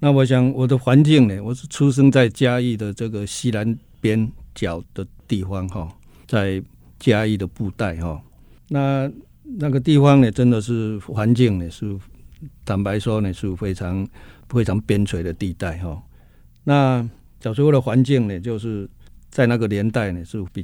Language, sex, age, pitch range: Chinese, male, 50-69, 90-120 Hz